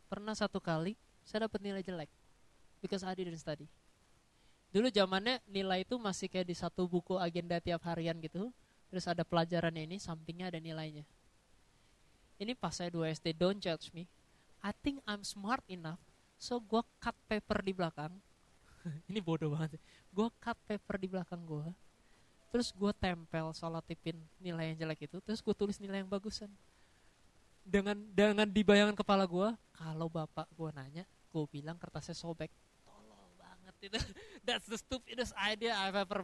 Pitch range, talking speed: 170-210 Hz, 160 wpm